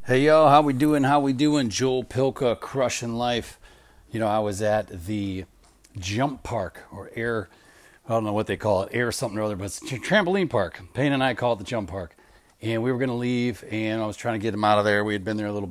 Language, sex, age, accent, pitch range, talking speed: English, male, 40-59, American, 100-125 Hz, 260 wpm